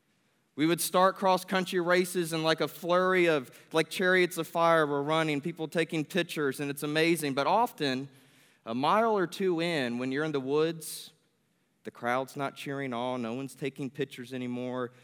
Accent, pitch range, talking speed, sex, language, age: American, 140-175 Hz, 175 wpm, male, English, 20-39